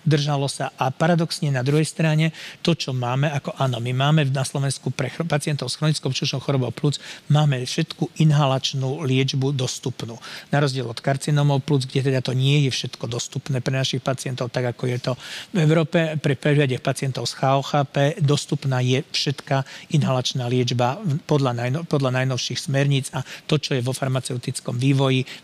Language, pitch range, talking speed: Slovak, 130-155 Hz, 165 wpm